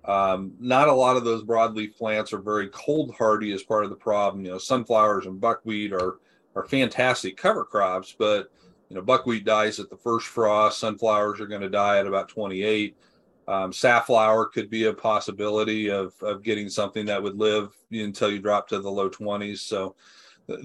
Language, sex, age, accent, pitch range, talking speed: English, male, 40-59, American, 105-130 Hz, 190 wpm